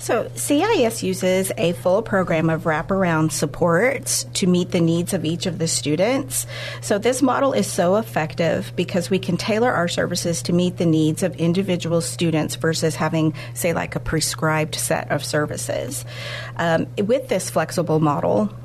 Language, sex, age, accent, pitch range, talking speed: English, female, 40-59, American, 145-185 Hz, 165 wpm